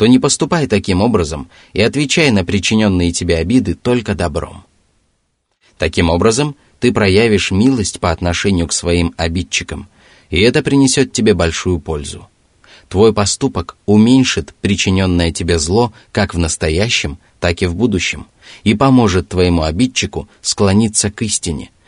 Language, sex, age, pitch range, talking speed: Russian, male, 30-49, 85-110 Hz, 135 wpm